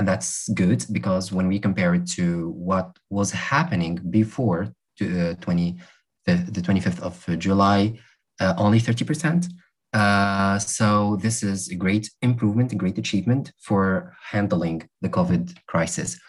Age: 20-39